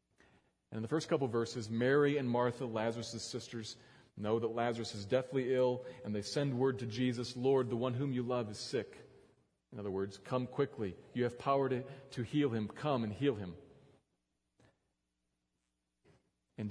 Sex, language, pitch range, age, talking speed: male, English, 85-135 Hz, 40-59, 170 wpm